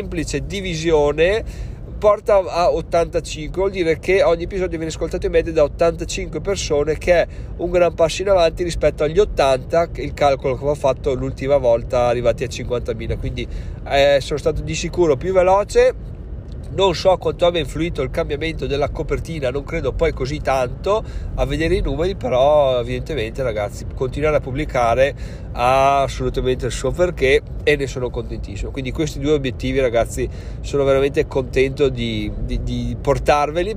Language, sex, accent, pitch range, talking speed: Italian, male, native, 130-165 Hz, 160 wpm